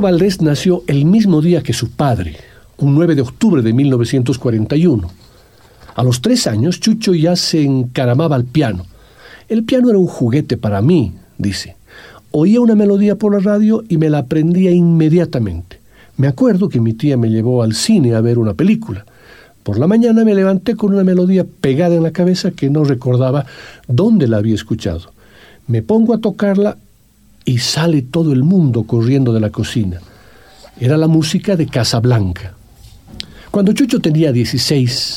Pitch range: 115-175 Hz